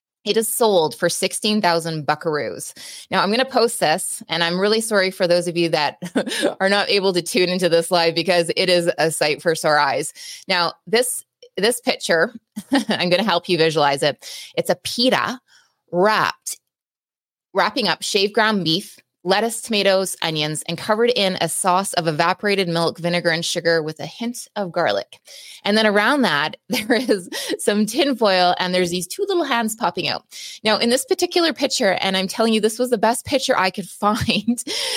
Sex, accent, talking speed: female, American, 185 wpm